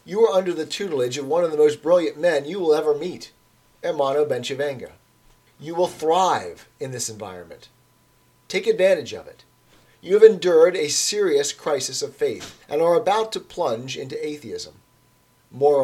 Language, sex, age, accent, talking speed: English, male, 40-59, American, 165 wpm